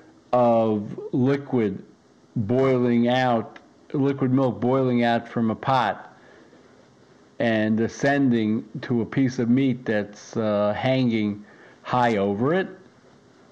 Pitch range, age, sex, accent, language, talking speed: 110-135 Hz, 60-79, male, American, English, 105 wpm